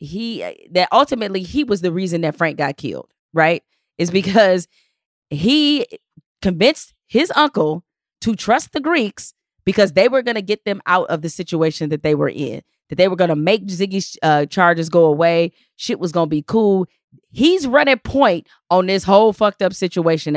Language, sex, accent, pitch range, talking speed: English, female, American, 170-235 Hz, 185 wpm